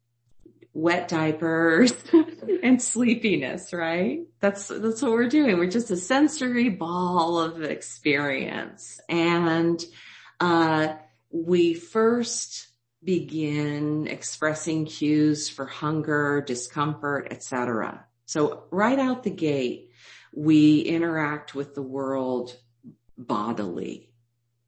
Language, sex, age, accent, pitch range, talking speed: English, female, 40-59, American, 145-185 Hz, 95 wpm